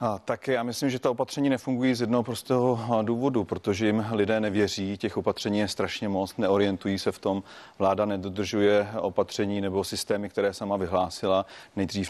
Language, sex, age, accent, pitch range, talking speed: Czech, male, 30-49, native, 95-110 Hz, 165 wpm